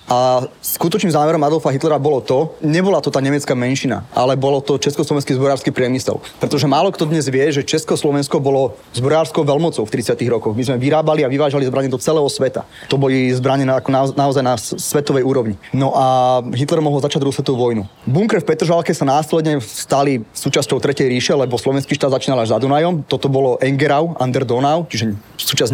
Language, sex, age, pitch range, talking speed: Slovak, male, 20-39, 135-155 Hz, 185 wpm